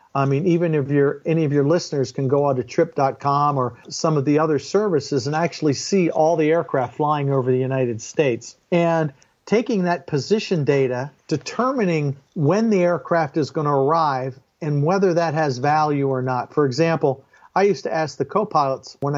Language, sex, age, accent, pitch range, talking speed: English, male, 50-69, American, 140-175 Hz, 185 wpm